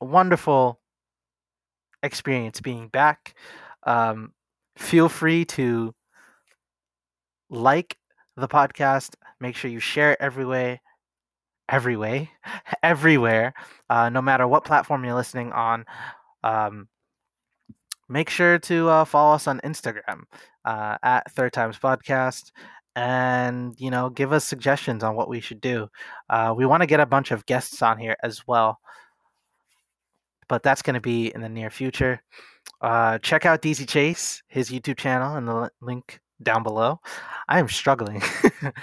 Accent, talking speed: American, 145 wpm